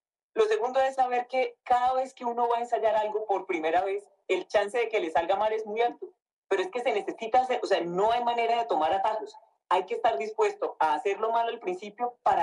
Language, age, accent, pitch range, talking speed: Spanish, 30-49, Colombian, 205-315 Hz, 240 wpm